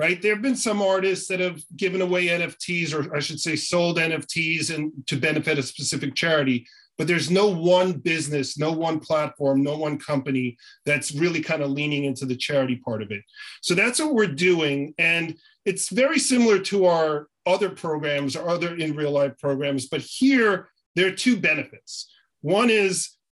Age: 40-59